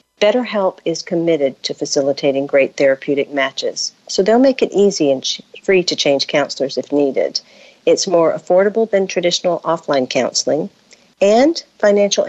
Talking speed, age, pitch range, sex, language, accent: 140 wpm, 50-69, 150-200 Hz, female, English, American